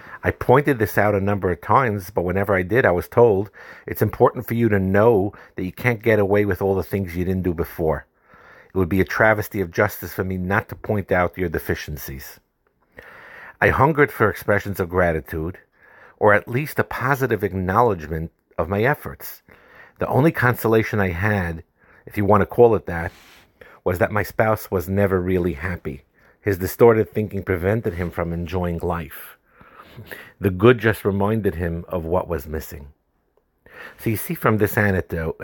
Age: 50-69